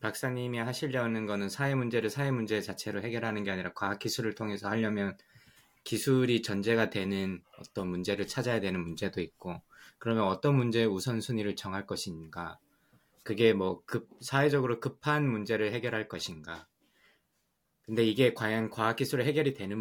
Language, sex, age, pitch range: Korean, male, 20-39, 100-135 Hz